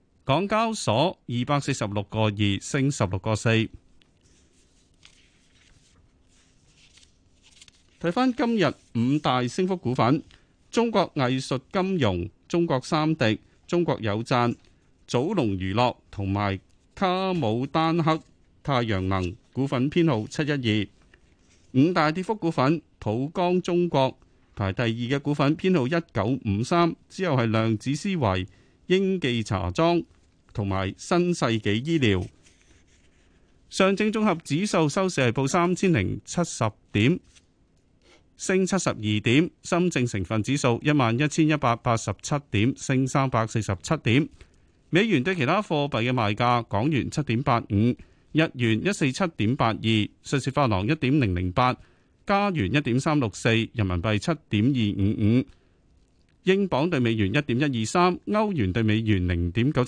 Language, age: Chinese, 30-49